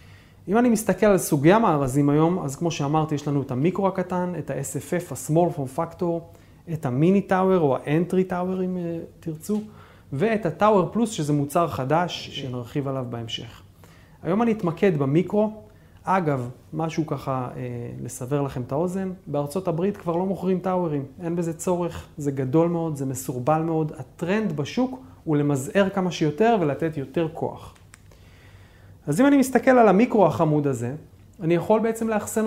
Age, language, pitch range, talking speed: 30-49, Hebrew, 135-185 Hz, 150 wpm